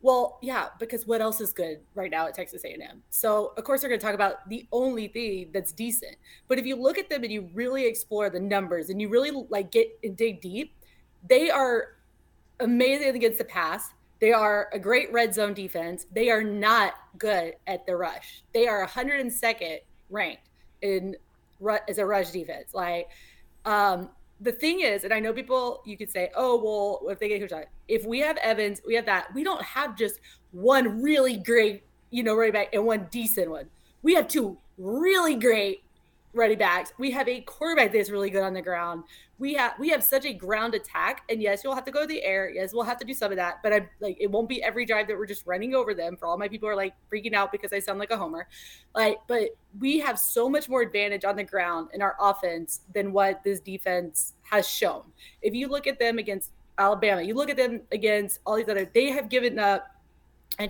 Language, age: English, 20-39